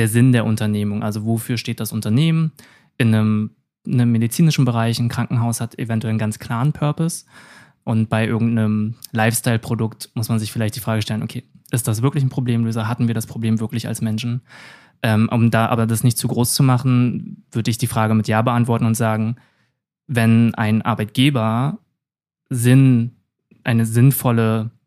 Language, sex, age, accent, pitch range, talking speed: German, male, 20-39, German, 110-120 Hz, 175 wpm